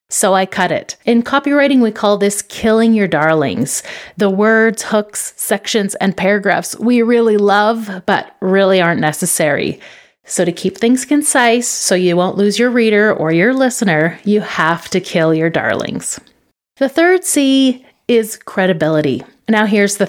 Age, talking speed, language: 30-49, 160 wpm, English